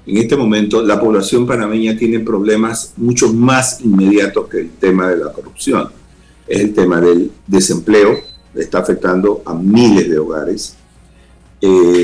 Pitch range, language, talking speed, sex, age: 90-120 Hz, Spanish, 150 wpm, male, 50-69